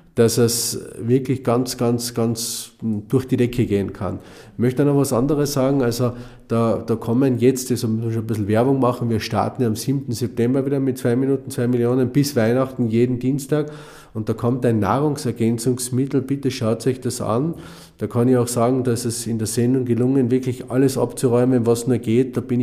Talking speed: 200 wpm